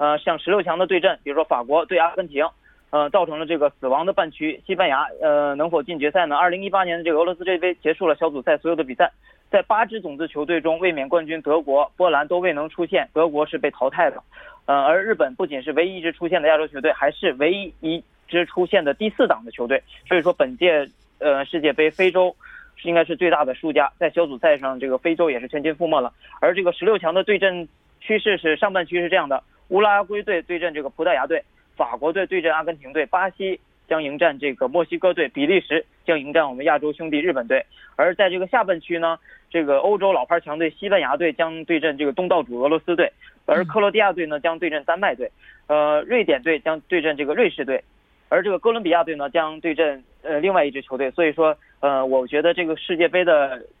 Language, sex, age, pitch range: Korean, male, 20-39, 150-185 Hz